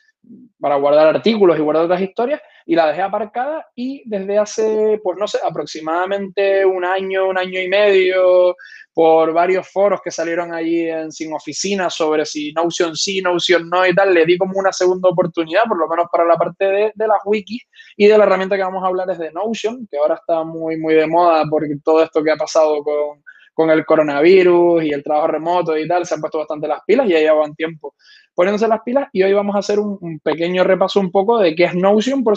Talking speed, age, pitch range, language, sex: 220 wpm, 20-39, 160-195 Hz, Spanish, male